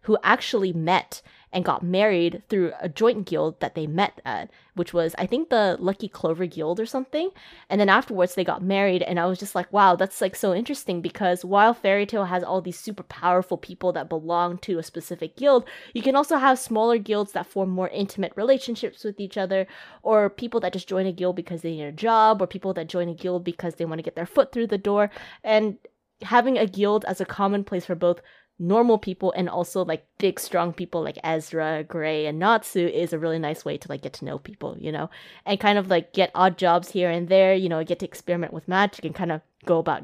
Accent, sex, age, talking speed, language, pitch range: American, female, 20-39, 235 wpm, English, 170-210 Hz